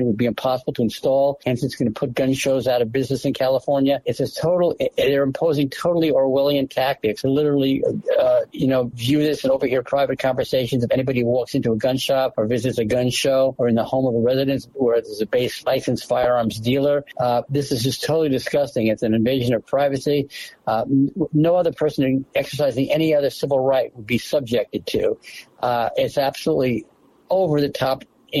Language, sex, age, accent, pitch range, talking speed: English, male, 60-79, American, 125-145 Hz, 195 wpm